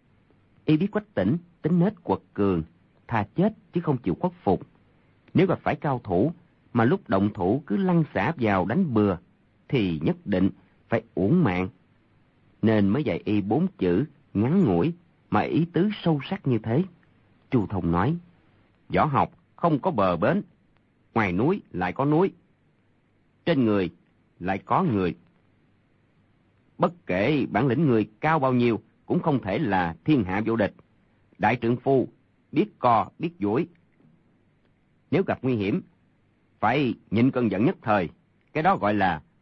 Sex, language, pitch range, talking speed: male, Vietnamese, 100-155 Hz, 165 wpm